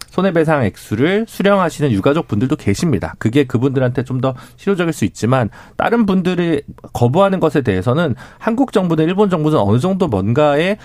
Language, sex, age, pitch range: Korean, male, 40-59, 110-175 Hz